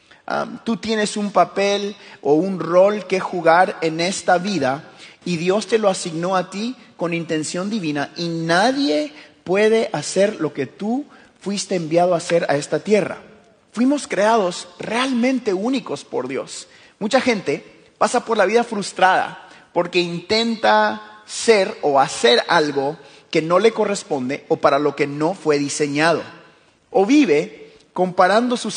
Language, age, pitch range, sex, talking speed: Spanish, 30-49, 160-220 Hz, male, 145 wpm